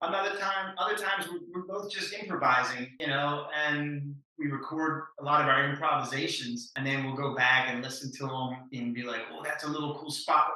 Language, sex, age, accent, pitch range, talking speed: English, male, 30-49, American, 130-160 Hz, 205 wpm